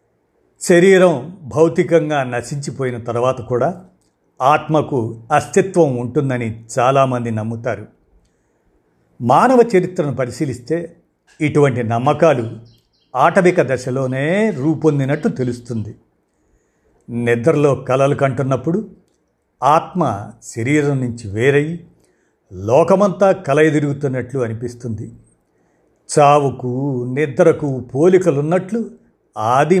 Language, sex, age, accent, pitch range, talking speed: Telugu, male, 50-69, native, 120-165 Hz, 70 wpm